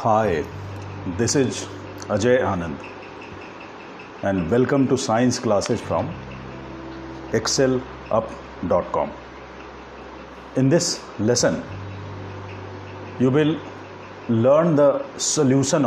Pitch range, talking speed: 80-130 Hz, 75 wpm